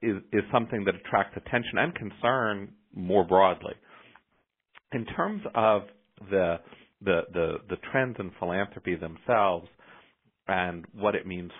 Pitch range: 85-110 Hz